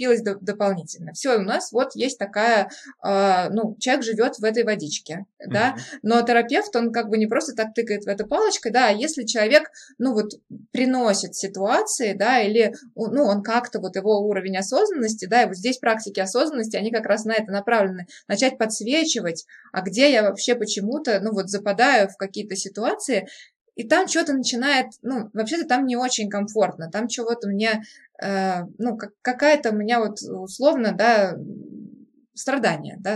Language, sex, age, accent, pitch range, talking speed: Russian, female, 20-39, native, 200-250 Hz, 160 wpm